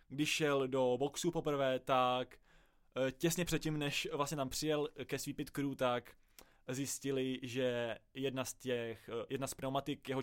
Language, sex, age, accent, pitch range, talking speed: Czech, male, 20-39, native, 125-145 Hz, 145 wpm